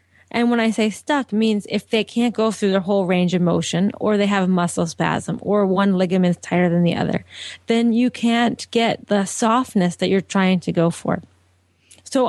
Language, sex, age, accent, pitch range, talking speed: English, female, 30-49, American, 190-235 Hz, 210 wpm